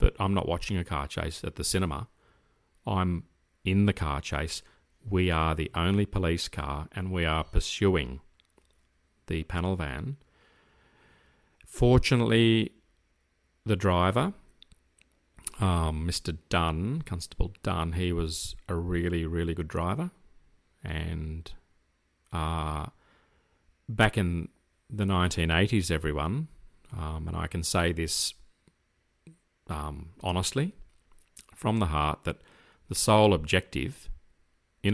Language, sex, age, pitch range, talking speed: English, male, 40-59, 75-95 Hz, 115 wpm